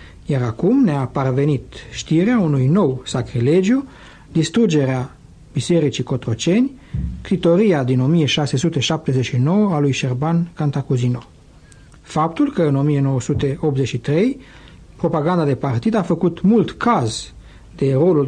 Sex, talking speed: male, 100 wpm